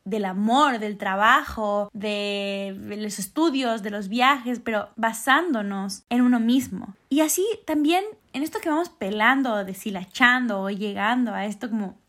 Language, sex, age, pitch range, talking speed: Spanish, female, 10-29, 235-305 Hz, 145 wpm